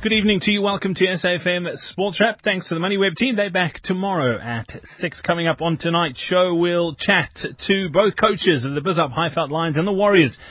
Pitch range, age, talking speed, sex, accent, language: 125-170 Hz, 30-49, 210 wpm, male, British, English